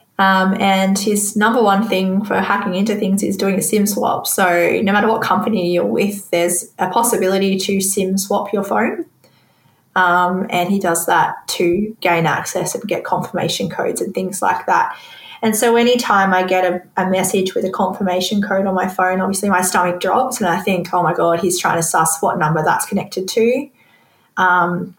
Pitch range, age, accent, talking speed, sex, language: 185-205 Hz, 20-39, Australian, 195 wpm, female, English